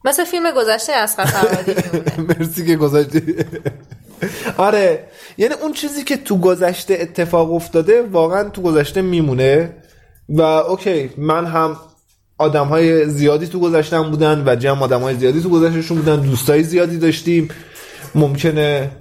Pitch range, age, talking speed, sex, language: 140-185 Hz, 20-39, 135 wpm, male, Persian